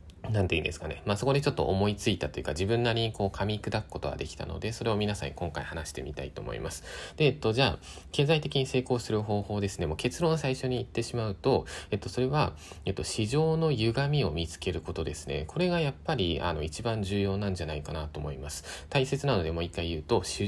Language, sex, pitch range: Japanese, male, 80-130 Hz